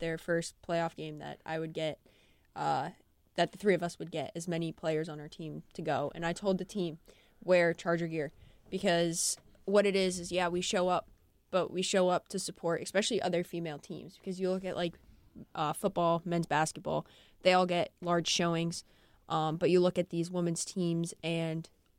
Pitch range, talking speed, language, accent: 165-190 Hz, 200 wpm, English, American